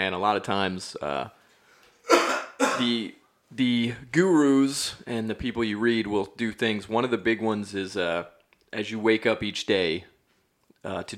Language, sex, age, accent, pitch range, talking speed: English, male, 30-49, American, 95-115 Hz, 170 wpm